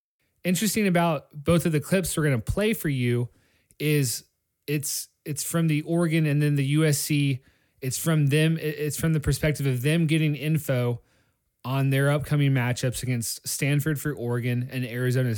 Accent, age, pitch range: American, 30-49, 110-150 Hz